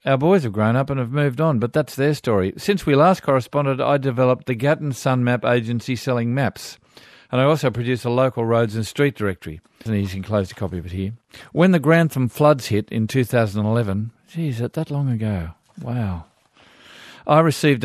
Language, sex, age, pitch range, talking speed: English, male, 50-69, 110-140 Hz, 200 wpm